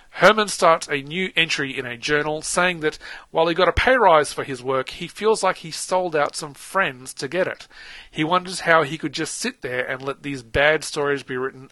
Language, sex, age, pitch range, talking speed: English, male, 40-59, 130-165 Hz, 230 wpm